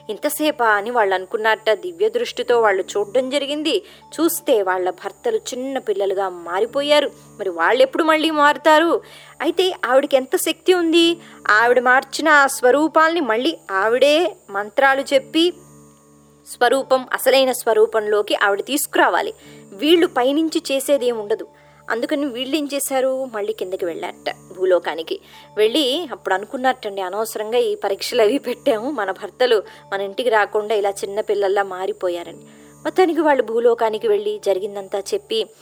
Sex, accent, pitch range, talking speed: male, native, 205-320 Hz, 120 wpm